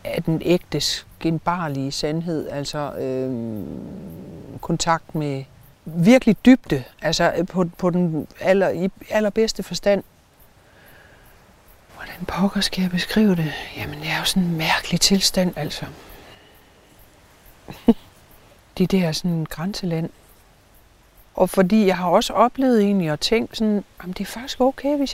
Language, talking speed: Danish, 135 wpm